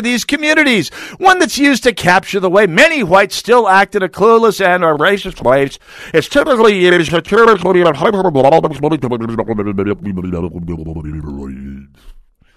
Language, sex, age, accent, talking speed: English, male, 50-69, American, 105 wpm